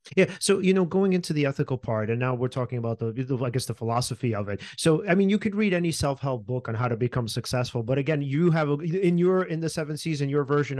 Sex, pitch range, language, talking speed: male, 130-165 Hz, English, 270 wpm